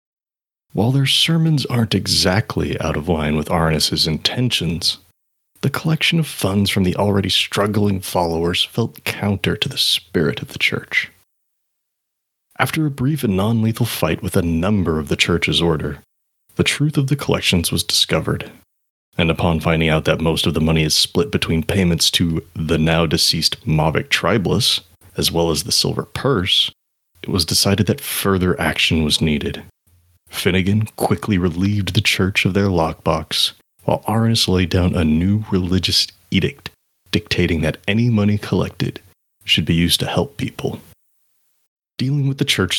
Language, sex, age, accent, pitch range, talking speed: English, male, 30-49, American, 80-105 Hz, 155 wpm